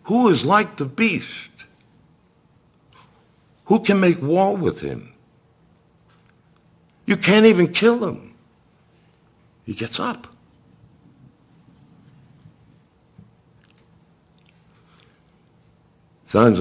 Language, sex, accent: English, male, American